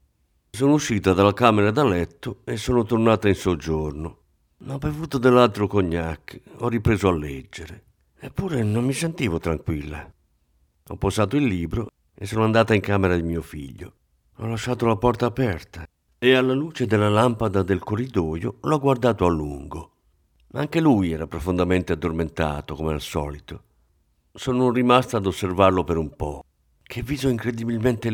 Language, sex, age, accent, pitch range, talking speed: Italian, male, 50-69, native, 80-115 Hz, 150 wpm